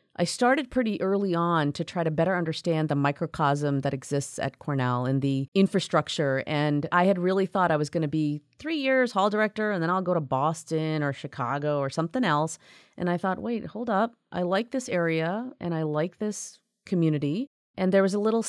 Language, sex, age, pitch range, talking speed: English, female, 30-49, 150-180 Hz, 210 wpm